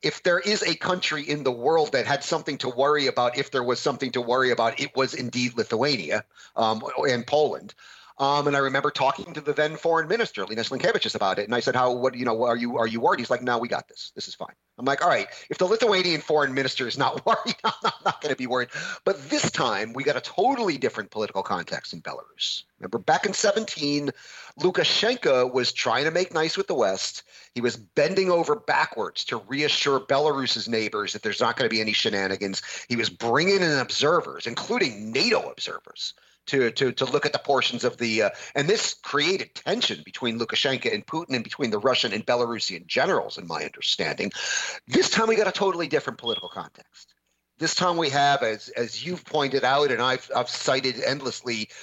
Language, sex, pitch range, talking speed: English, male, 120-160 Hz, 210 wpm